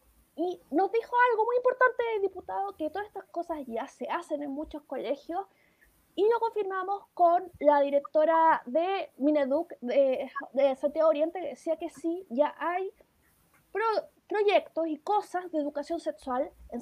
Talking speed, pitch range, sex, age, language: 150 wpm, 275-350 Hz, female, 20-39, Spanish